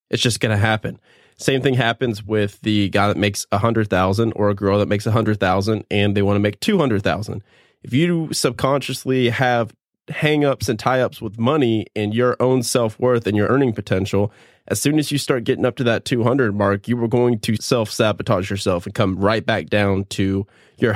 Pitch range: 105-130 Hz